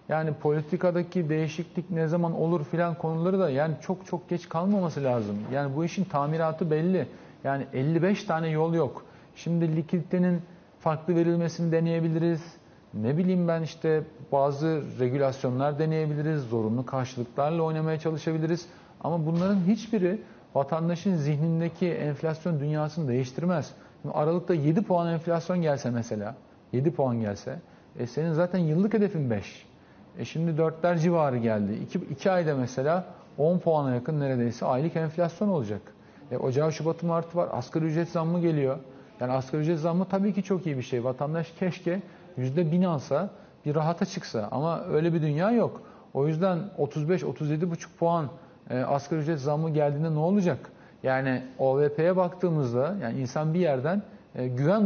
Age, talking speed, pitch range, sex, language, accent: 50-69, 145 wpm, 140-175 Hz, male, Turkish, native